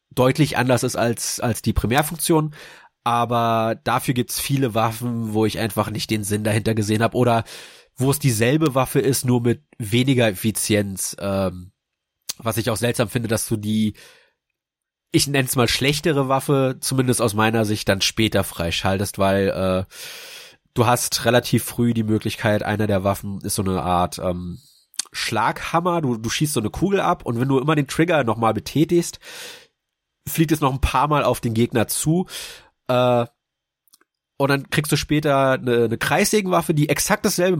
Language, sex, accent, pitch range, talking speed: German, male, German, 110-140 Hz, 170 wpm